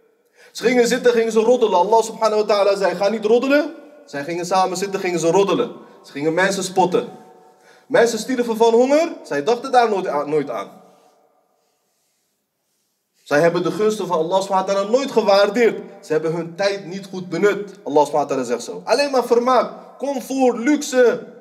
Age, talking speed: 30-49, 160 wpm